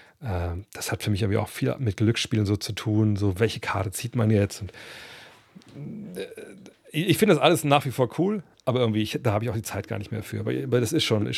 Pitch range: 105-135 Hz